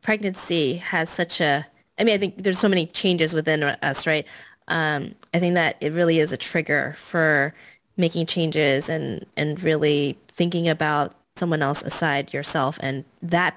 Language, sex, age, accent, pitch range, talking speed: English, female, 20-39, American, 155-190 Hz, 170 wpm